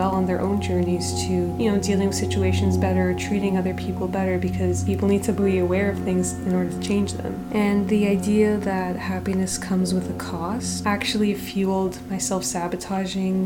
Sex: female